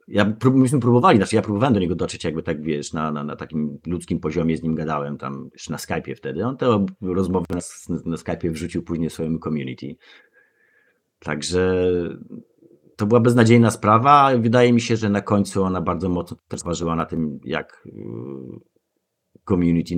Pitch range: 75-105 Hz